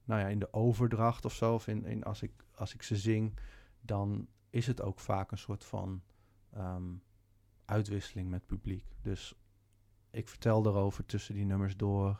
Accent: Dutch